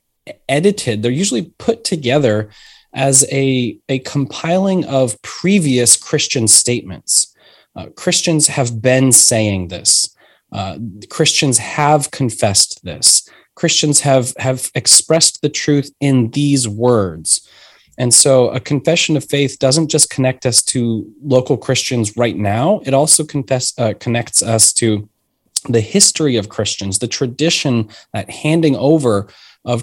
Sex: male